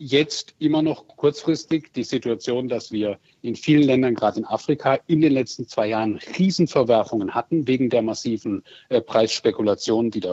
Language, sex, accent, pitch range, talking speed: German, male, German, 110-140 Hz, 165 wpm